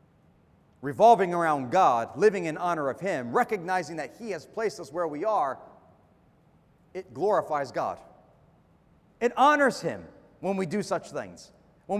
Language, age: English, 40-59